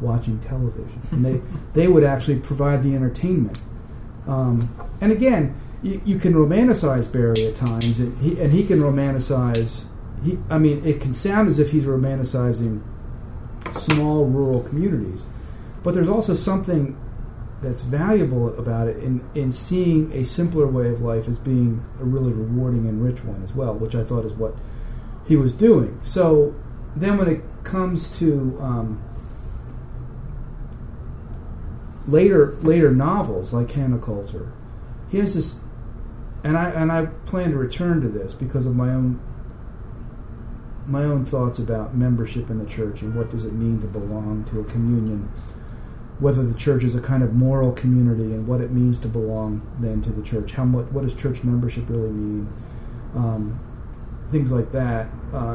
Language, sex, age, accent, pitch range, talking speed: English, male, 40-59, American, 115-145 Hz, 160 wpm